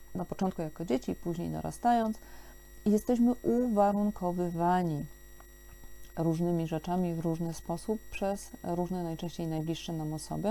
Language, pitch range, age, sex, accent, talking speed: Polish, 165-210 Hz, 40-59, female, native, 110 wpm